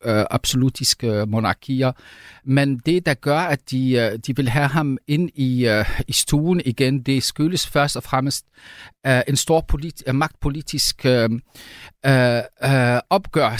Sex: male